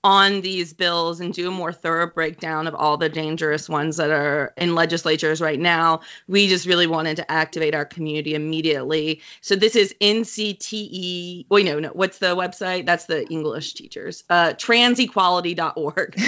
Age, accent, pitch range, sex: 30-49, American, 160-185 Hz, female